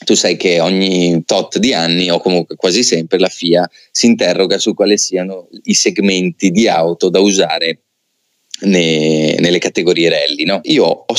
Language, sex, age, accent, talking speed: Italian, male, 30-49, native, 160 wpm